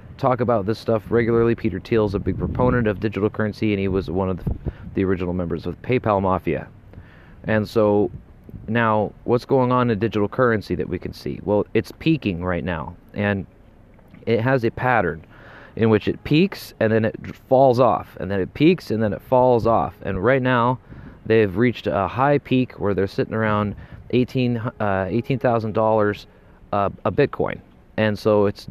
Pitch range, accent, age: 100-125 Hz, American, 30-49